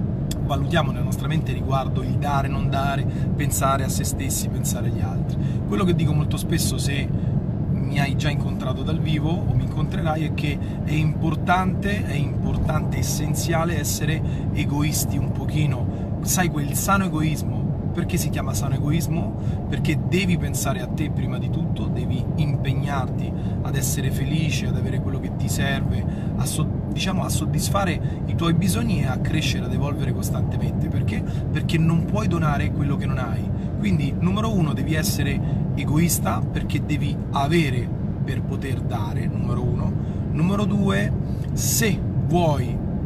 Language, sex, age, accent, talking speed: Italian, male, 30-49, native, 155 wpm